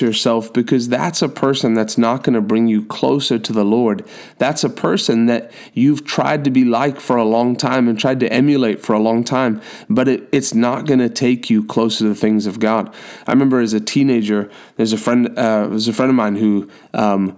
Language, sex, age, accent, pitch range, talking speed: English, male, 30-49, American, 110-130 Hz, 230 wpm